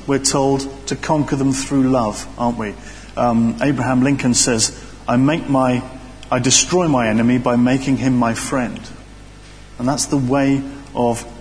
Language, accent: English, British